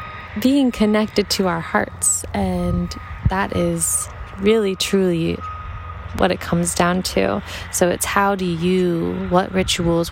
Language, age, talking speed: English, 20-39, 130 wpm